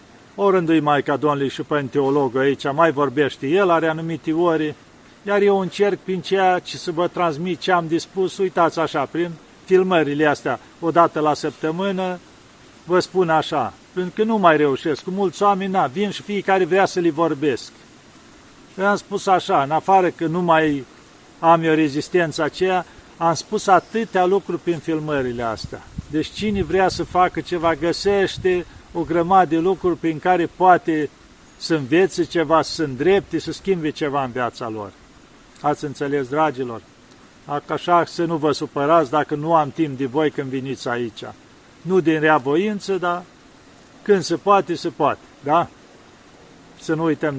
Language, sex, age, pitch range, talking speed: Romanian, male, 40-59, 145-180 Hz, 165 wpm